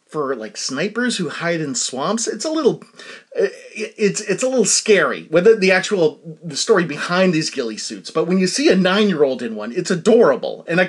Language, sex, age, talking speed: English, male, 30-49, 200 wpm